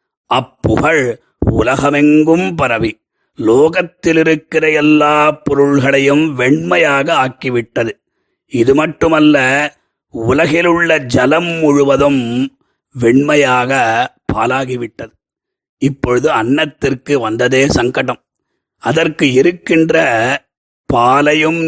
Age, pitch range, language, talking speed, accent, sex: 30-49, 125-150 Hz, Tamil, 60 wpm, native, male